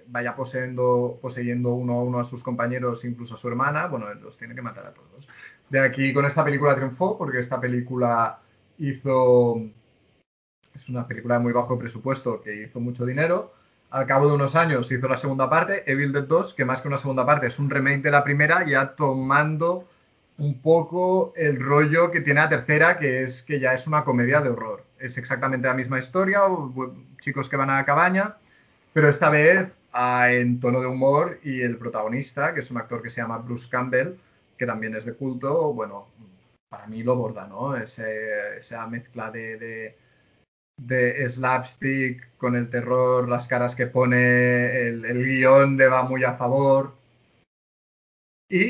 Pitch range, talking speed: 120-140 Hz, 180 wpm